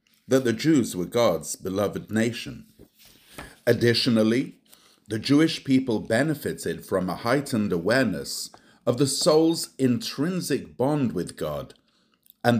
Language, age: English, 50-69